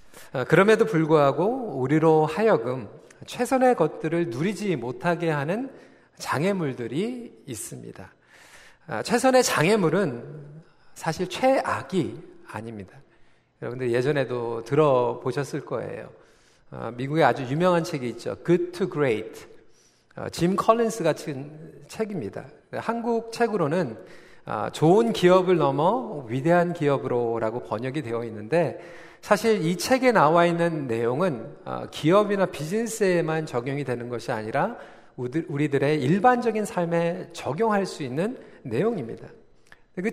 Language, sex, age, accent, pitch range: Korean, male, 40-59, native, 140-210 Hz